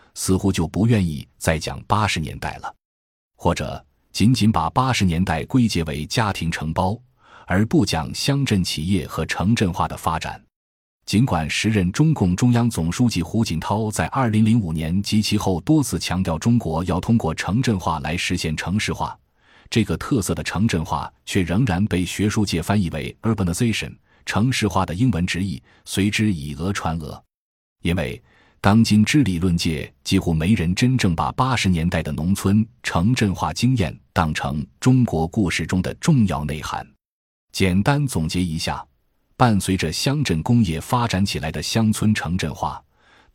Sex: male